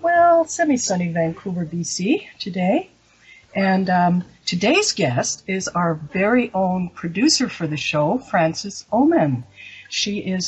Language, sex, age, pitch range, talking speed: English, female, 60-79, 155-195 Hz, 120 wpm